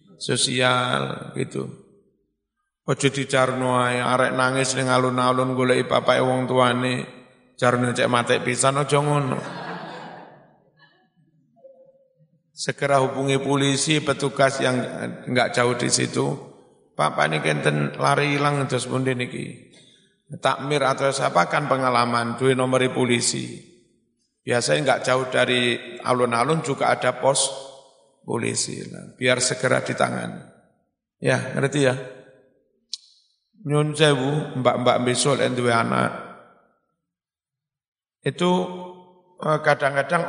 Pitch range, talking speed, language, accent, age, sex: 125-145 Hz, 100 wpm, Indonesian, native, 50-69, male